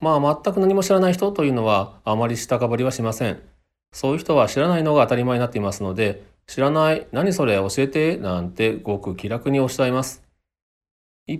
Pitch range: 100-155 Hz